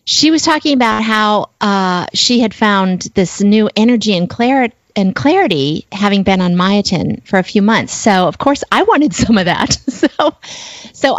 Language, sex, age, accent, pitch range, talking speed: English, female, 30-49, American, 180-245 Hz, 175 wpm